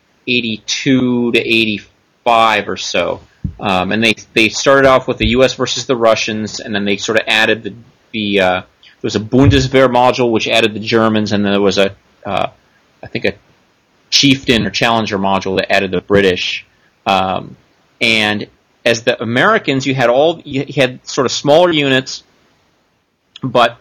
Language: English